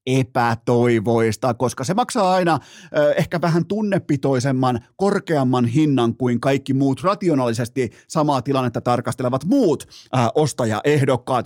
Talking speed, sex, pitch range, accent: 100 wpm, male, 125-170 Hz, native